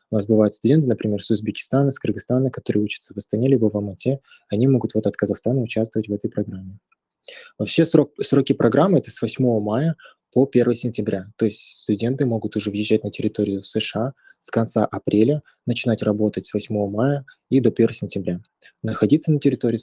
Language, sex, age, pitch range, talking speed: Russian, male, 20-39, 110-130 Hz, 190 wpm